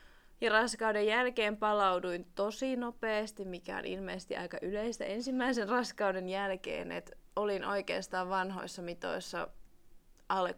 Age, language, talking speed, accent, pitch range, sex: 20-39, Finnish, 115 wpm, native, 185-230 Hz, female